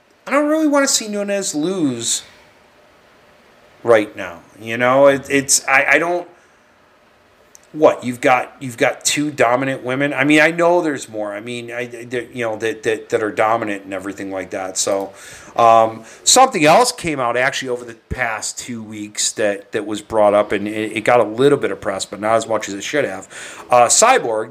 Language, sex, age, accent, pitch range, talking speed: English, male, 40-59, American, 105-130 Hz, 200 wpm